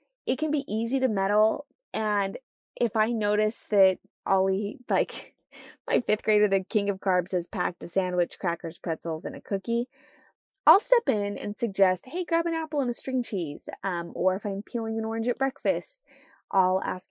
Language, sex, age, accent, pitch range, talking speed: English, female, 20-39, American, 190-255 Hz, 185 wpm